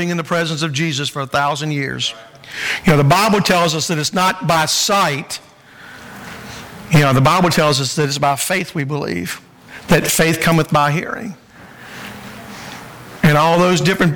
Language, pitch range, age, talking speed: English, 165-200 Hz, 60-79, 175 wpm